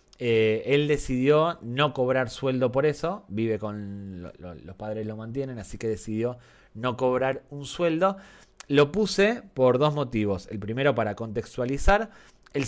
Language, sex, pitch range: Spanish, male, 110-150 Hz